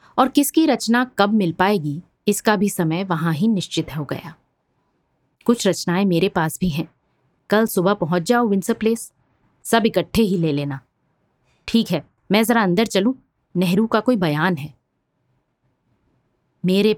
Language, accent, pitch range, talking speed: Hindi, native, 155-215 Hz, 150 wpm